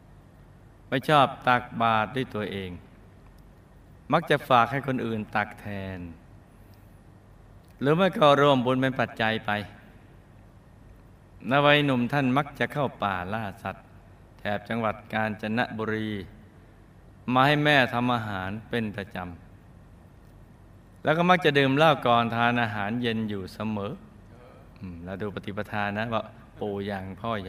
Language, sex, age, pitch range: Thai, male, 20-39, 100-125 Hz